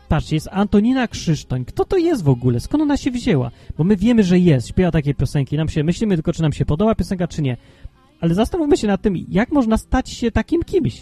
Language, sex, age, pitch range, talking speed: Polish, male, 30-49, 145-215 Hz, 235 wpm